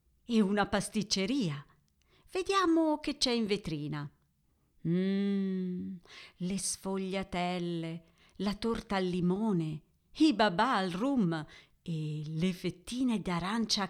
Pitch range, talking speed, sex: 165-225 Hz, 100 wpm, female